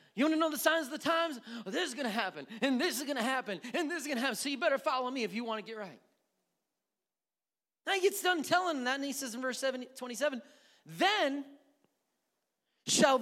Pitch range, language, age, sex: 240-315 Hz, English, 30-49, male